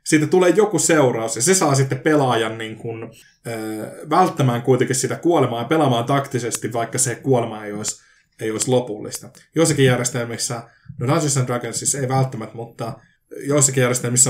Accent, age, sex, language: native, 20-39, male, Finnish